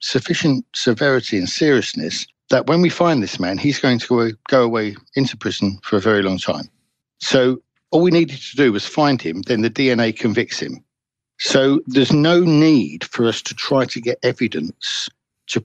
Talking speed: 190 wpm